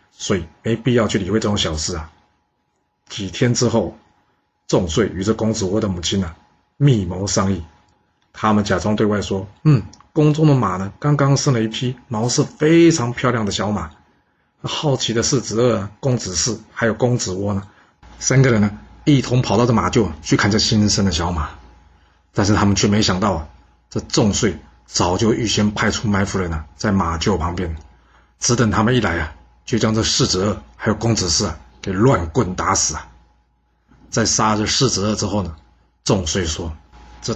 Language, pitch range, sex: Chinese, 85-115 Hz, male